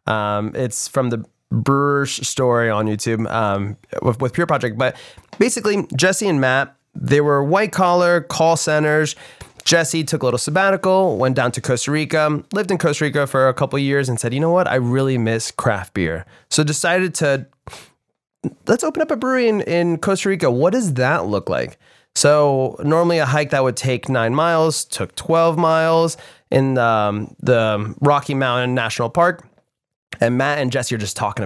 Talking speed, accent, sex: 185 wpm, American, male